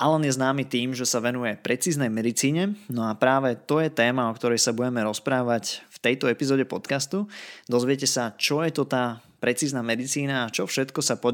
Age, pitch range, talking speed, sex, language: 20-39, 120-140 Hz, 195 wpm, male, Slovak